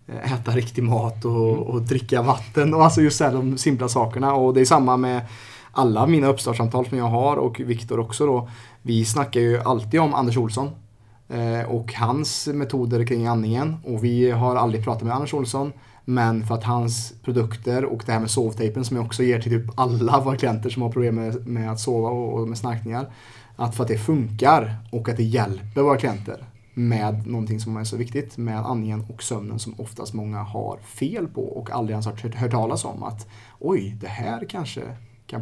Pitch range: 115-130 Hz